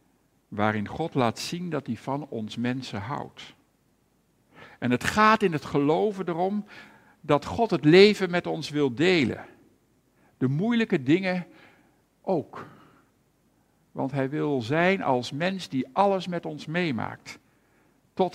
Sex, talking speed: male, 135 wpm